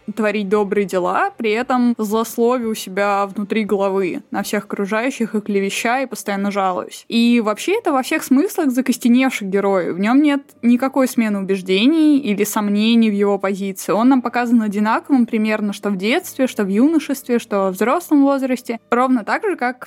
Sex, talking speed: female, 170 wpm